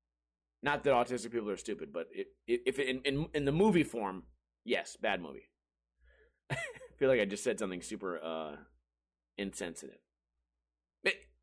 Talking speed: 165 wpm